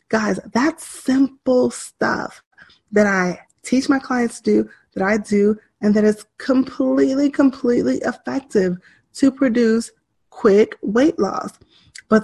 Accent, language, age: American, English, 20-39